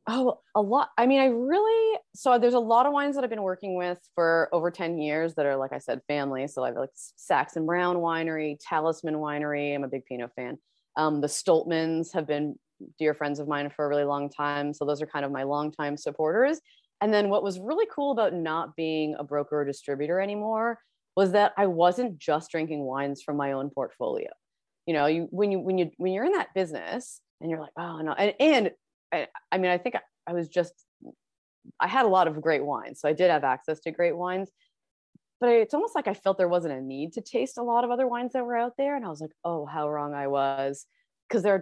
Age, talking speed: 30-49, 235 wpm